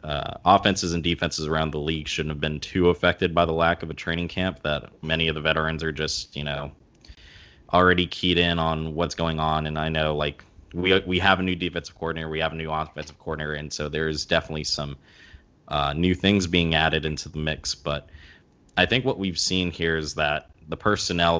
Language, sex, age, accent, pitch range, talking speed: English, male, 20-39, American, 75-90 Hz, 215 wpm